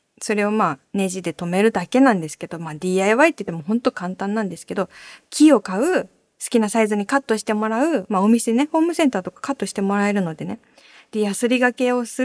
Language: Japanese